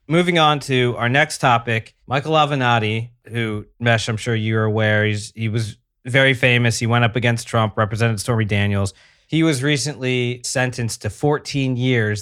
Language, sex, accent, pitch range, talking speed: English, male, American, 110-135 Hz, 160 wpm